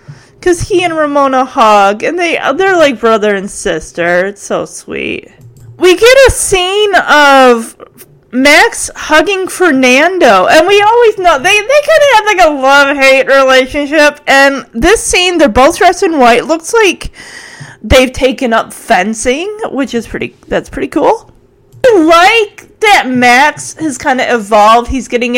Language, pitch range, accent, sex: English, 215-295 Hz, American, female